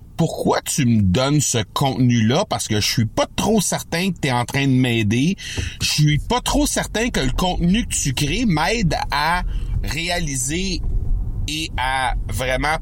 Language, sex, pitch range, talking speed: French, male, 95-140 Hz, 185 wpm